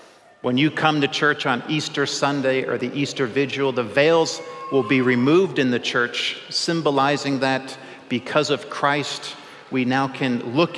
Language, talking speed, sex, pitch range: English, 160 wpm, male, 130-150 Hz